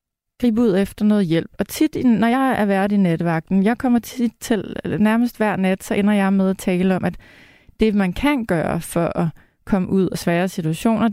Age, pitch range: 30-49, 185-230 Hz